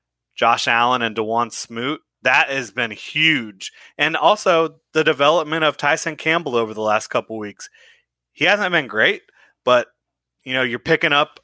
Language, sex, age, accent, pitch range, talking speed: English, male, 30-49, American, 115-135 Hz, 170 wpm